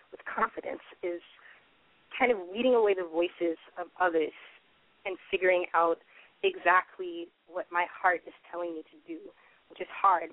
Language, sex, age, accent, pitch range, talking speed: English, female, 20-39, American, 170-215 Hz, 150 wpm